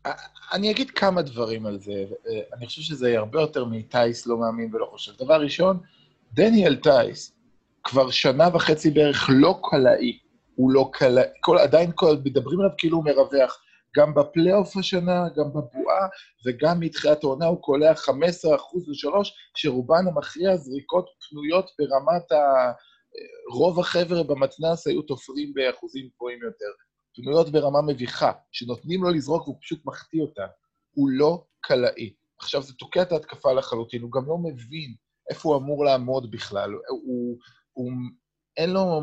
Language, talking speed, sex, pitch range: Hebrew, 150 wpm, male, 130-170 Hz